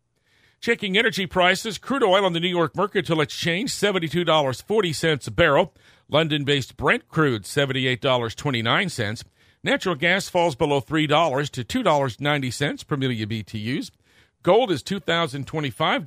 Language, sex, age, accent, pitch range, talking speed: English, male, 50-69, American, 130-175 Hz, 180 wpm